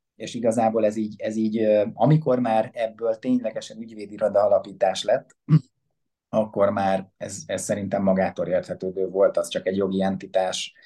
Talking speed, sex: 145 wpm, male